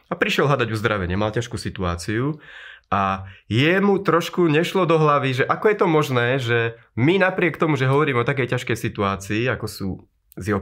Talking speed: 180 wpm